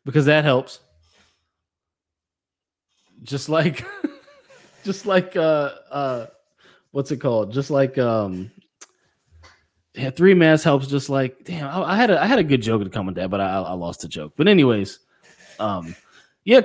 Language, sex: English, male